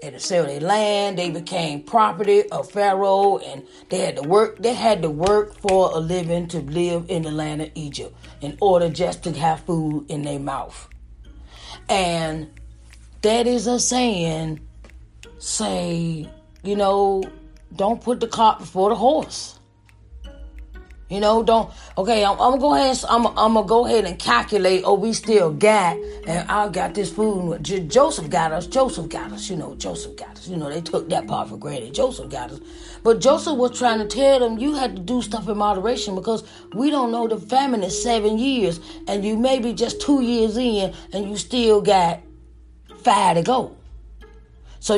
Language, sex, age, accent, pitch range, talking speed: English, female, 30-49, American, 165-225 Hz, 185 wpm